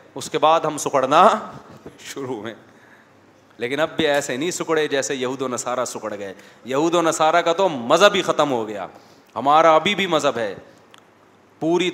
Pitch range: 135-175 Hz